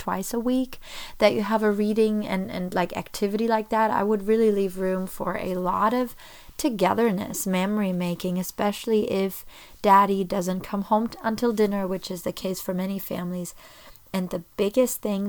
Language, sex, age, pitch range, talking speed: English, female, 30-49, 185-220 Hz, 180 wpm